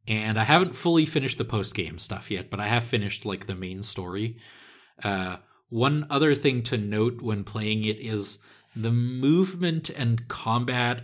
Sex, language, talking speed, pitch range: male, English, 170 wpm, 105-140 Hz